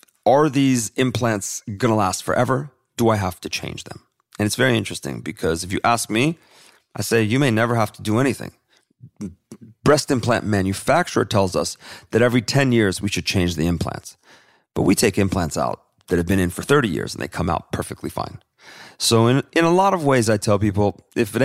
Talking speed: 210 wpm